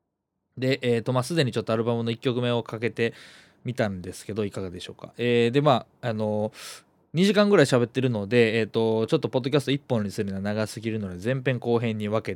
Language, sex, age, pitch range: Japanese, male, 20-39, 100-130 Hz